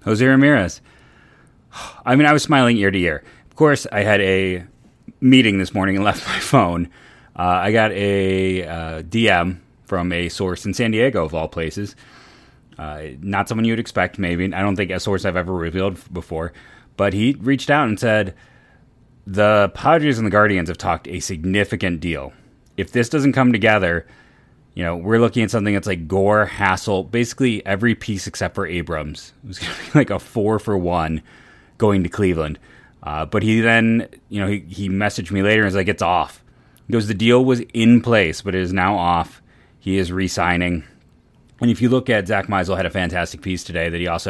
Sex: male